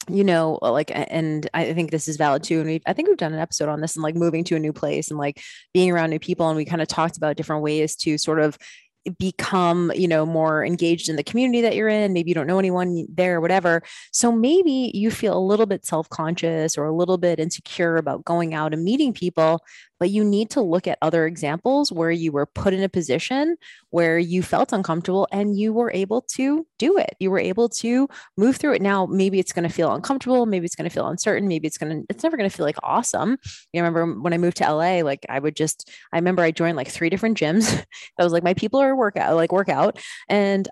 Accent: American